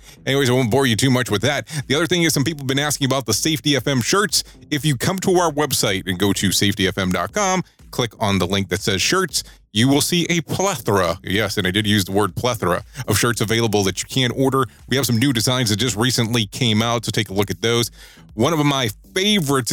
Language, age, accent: English, 30-49, American